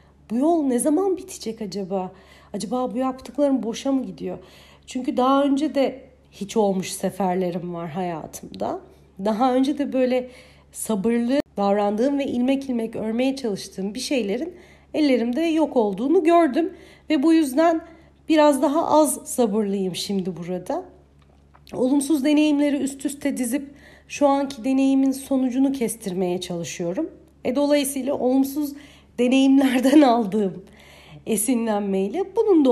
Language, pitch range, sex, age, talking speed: Turkish, 220-290 Hz, female, 40-59, 120 wpm